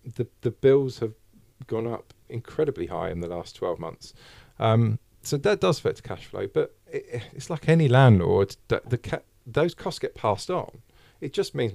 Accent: British